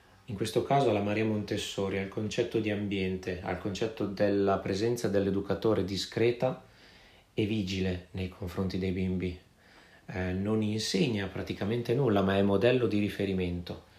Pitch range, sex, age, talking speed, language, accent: 95-115 Hz, male, 30-49, 140 wpm, Italian, native